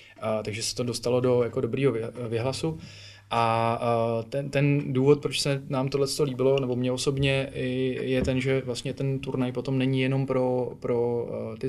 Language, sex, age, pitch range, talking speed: Czech, male, 20-39, 115-135 Hz, 160 wpm